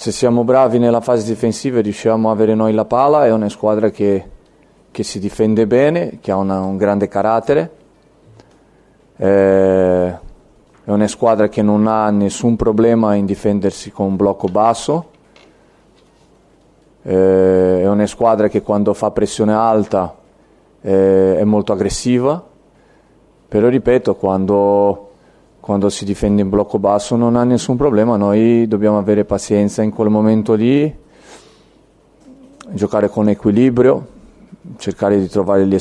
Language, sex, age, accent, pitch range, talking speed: Italian, male, 30-49, native, 100-115 Hz, 135 wpm